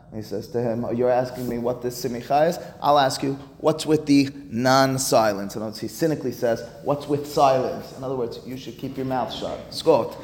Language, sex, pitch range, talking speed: English, male, 125-165 Hz, 210 wpm